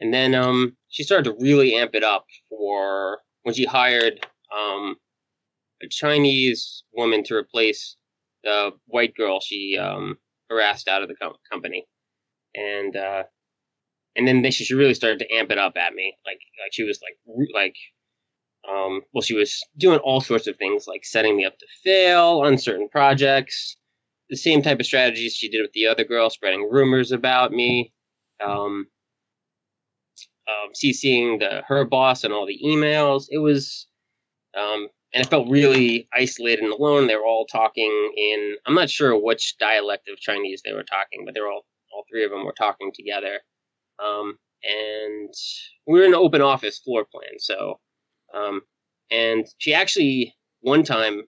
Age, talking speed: 20-39, 165 wpm